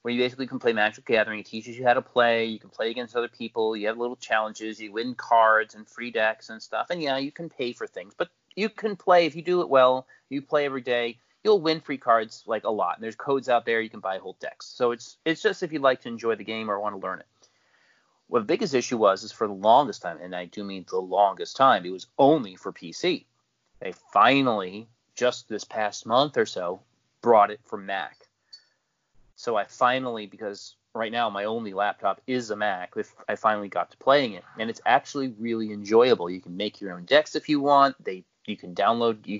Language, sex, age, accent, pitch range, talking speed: English, male, 30-49, American, 105-130 Hz, 235 wpm